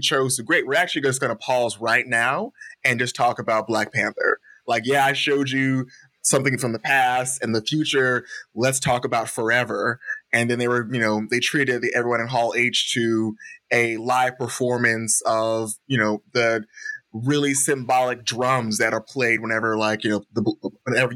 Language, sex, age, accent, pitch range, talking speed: English, male, 20-39, American, 110-130 Hz, 185 wpm